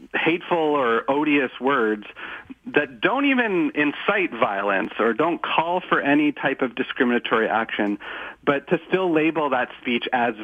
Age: 40-59